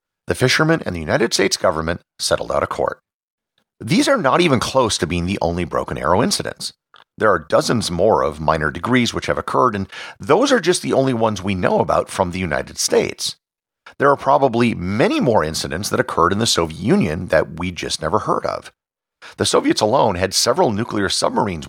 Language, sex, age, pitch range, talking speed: English, male, 50-69, 90-145 Hz, 200 wpm